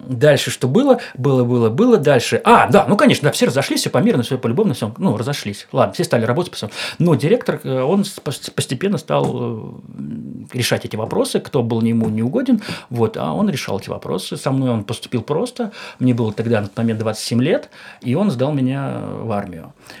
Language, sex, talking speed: Russian, male, 190 wpm